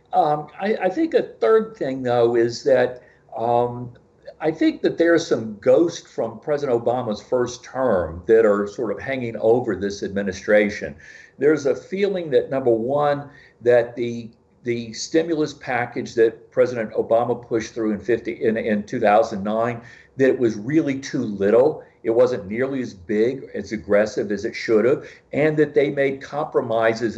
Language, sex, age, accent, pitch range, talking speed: English, male, 50-69, American, 115-155 Hz, 165 wpm